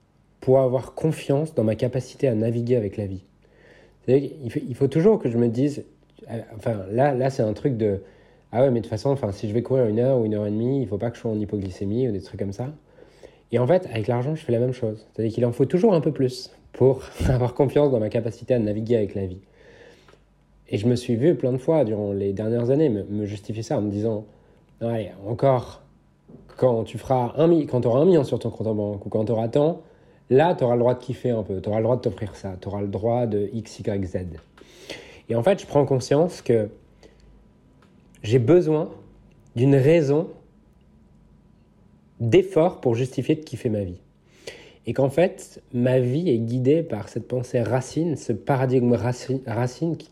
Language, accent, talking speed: French, French, 225 wpm